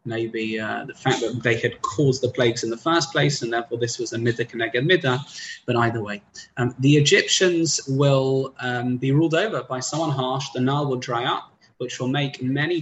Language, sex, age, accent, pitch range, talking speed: English, male, 20-39, British, 125-170 Hz, 205 wpm